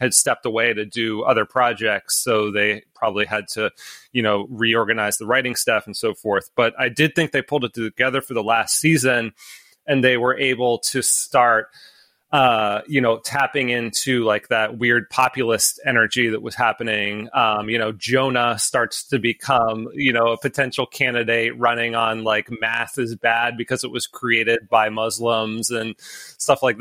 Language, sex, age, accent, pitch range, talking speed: English, male, 30-49, American, 110-130 Hz, 175 wpm